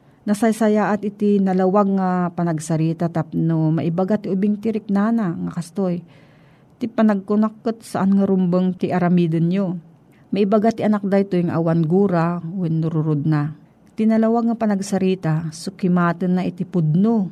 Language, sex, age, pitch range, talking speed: Filipino, female, 40-59, 160-205 Hz, 120 wpm